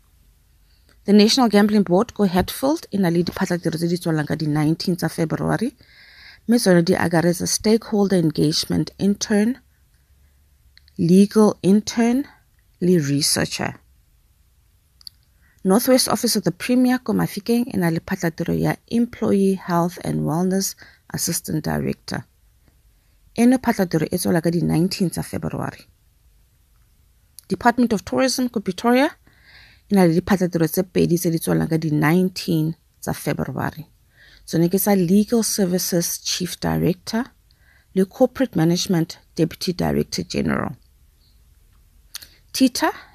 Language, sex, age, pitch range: English, female, 30-49, 150-210 Hz